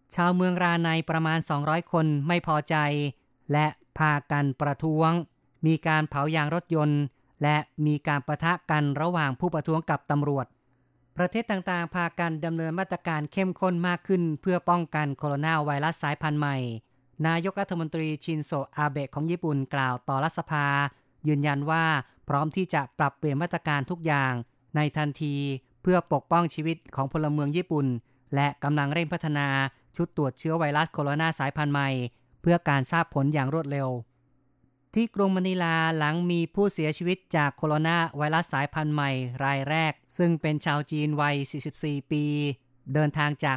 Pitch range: 140-165 Hz